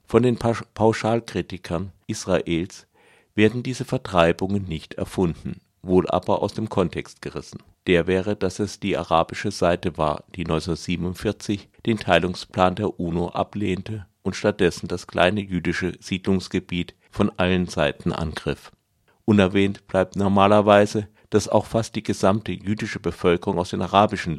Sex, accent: male, German